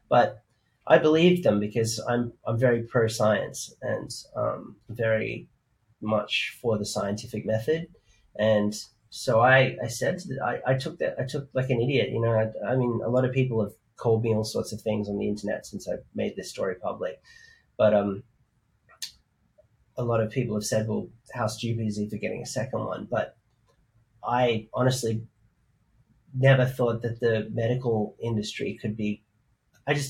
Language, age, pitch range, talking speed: English, 30-49, 110-125 Hz, 180 wpm